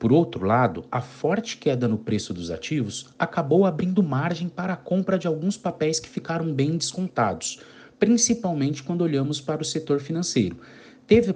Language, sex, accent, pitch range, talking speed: Portuguese, male, Brazilian, 130-185 Hz, 165 wpm